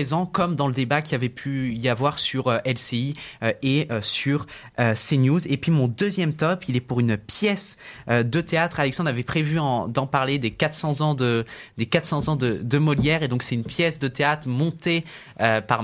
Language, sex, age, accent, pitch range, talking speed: French, male, 20-39, French, 120-150 Hz, 225 wpm